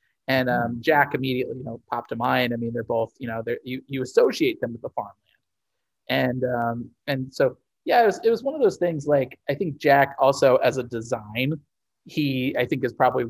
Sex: male